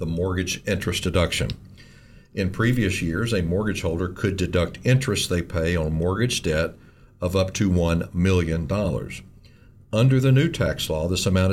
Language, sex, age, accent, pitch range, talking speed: English, male, 60-79, American, 90-120 Hz, 155 wpm